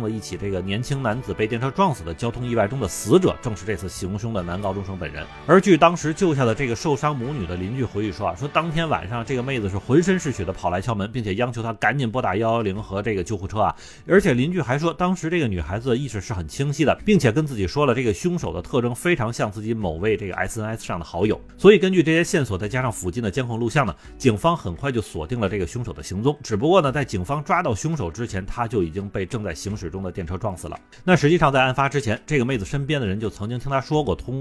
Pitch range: 100-145 Hz